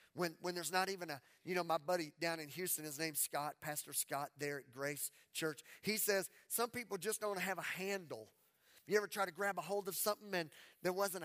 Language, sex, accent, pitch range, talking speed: English, male, American, 175-240 Hz, 230 wpm